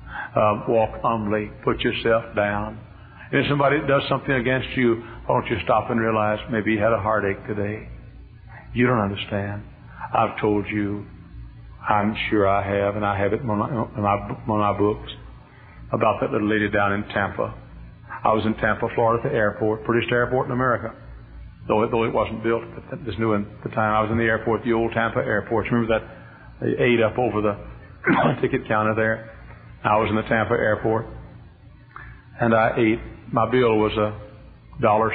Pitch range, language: 105-120 Hz, English